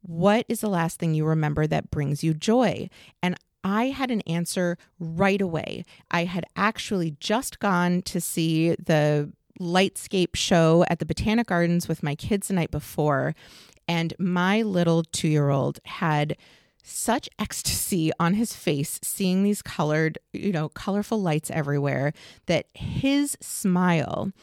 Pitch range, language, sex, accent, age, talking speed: 155-200 Hz, English, female, American, 30-49, 145 wpm